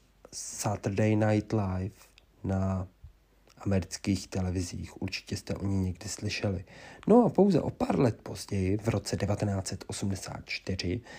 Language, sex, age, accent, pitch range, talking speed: Czech, male, 40-59, native, 95-110 Hz, 120 wpm